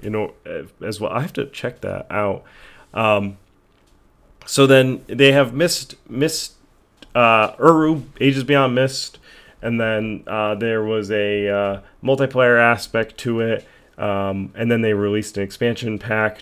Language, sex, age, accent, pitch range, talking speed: English, male, 30-49, American, 100-130 Hz, 145 wpm